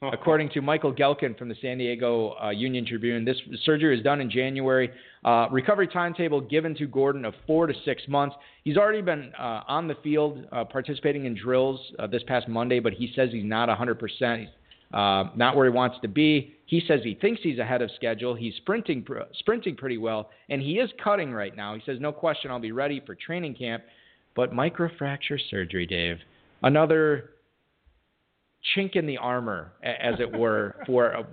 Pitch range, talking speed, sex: 120-150 Hz, 190 wpm, male